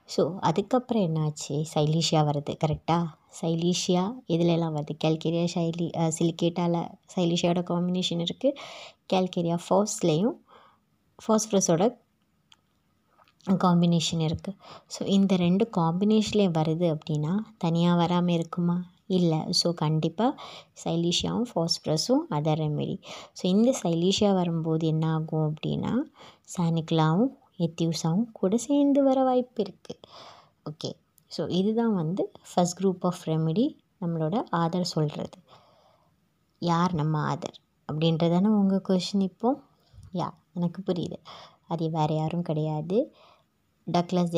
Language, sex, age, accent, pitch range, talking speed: Tamil, male, 20-39, native, 165-200 Hz, 100 wpm